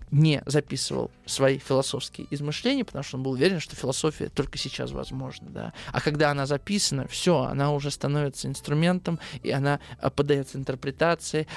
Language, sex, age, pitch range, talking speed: Russian, male, 20-39, 140-170 Hz, 150 wpm